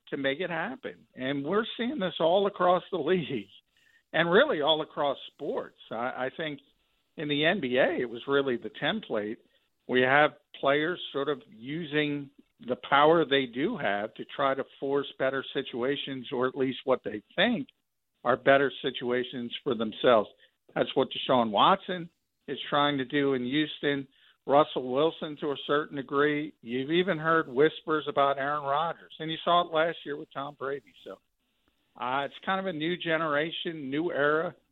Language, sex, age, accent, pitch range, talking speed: English, male, 50-69, American, 135-165 Hz, 170 wpm